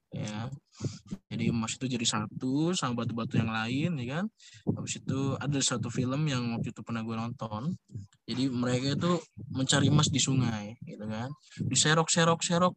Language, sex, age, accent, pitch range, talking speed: Indonesian, male, 20-39, native, 115-150 Hz, 150 wpm